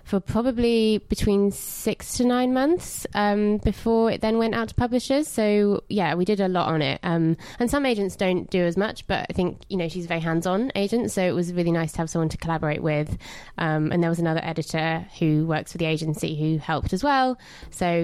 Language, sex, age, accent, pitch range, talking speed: English, female, 20-39, British, 165-205 Hz, 225 wpm